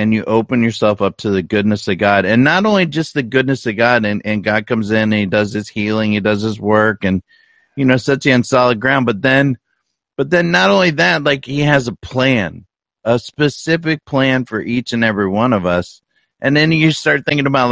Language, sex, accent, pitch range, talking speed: English, male, American, 110-150 Hz, 230 wpm